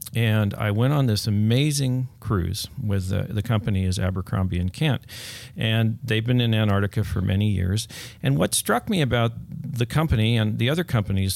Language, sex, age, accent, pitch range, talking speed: English, male, 50-69, American, 105-125 Hz, 180 wpm